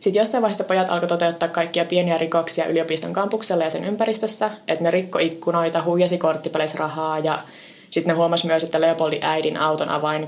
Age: 20-39